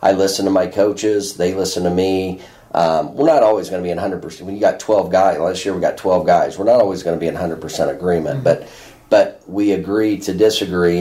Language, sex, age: English, male, 30-49